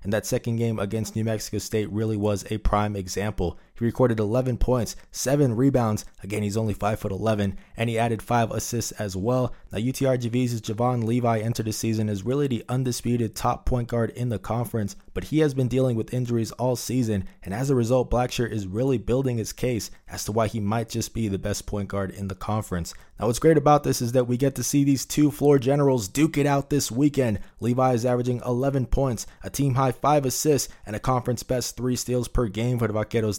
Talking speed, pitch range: 220 wpm, 105-125 Hz